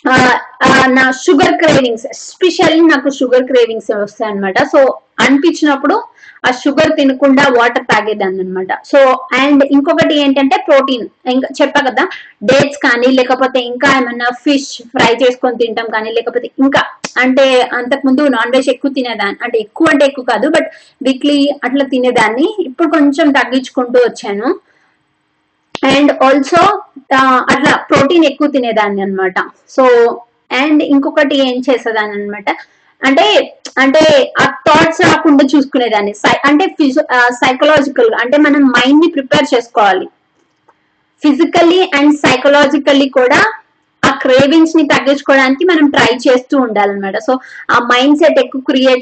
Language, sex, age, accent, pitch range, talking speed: Telugu, female, 20-39, native, 255-300 Hz, 125 wpm